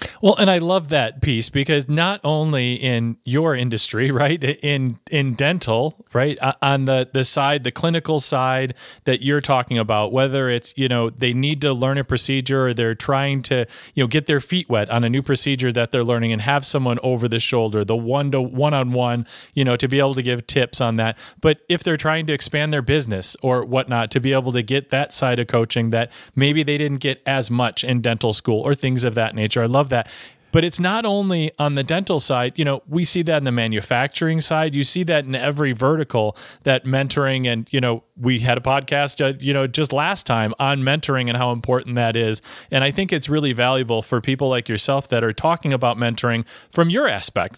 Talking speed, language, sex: 220 wpm, English, male